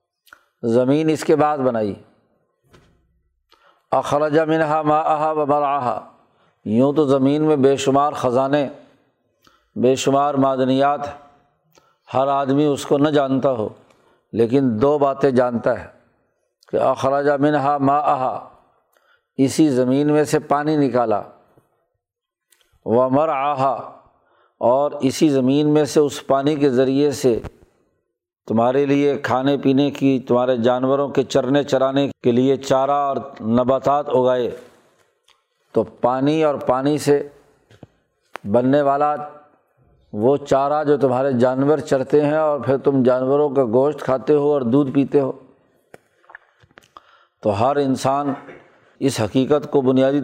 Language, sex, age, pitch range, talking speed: Urdu, male, 50-69, 130-145 Hz, 125 wpm